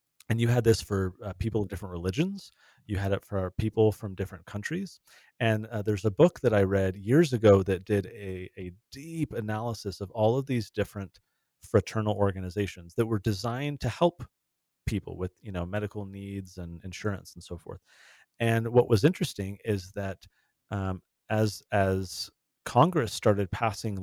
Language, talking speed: English, 170 wpm